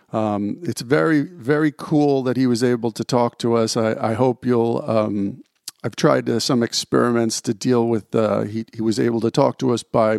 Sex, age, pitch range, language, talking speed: male, 50-69, 115-140 Hz, English, 210 wpm